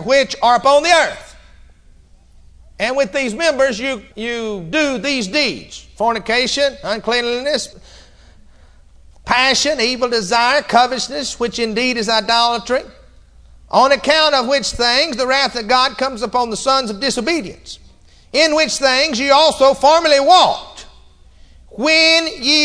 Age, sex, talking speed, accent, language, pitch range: 50-69, male, 125 wpm, American, English, 235-315 Hz